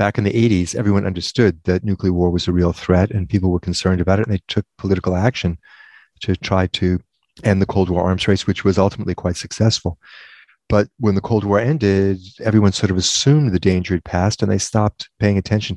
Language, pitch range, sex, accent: English, 90-110 Hz, male, American